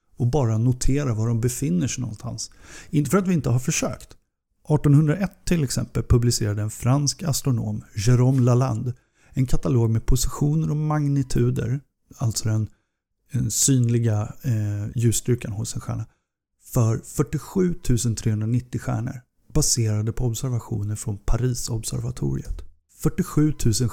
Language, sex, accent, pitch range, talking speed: Swedish, male, native, 115-145 Hz, 125 wpm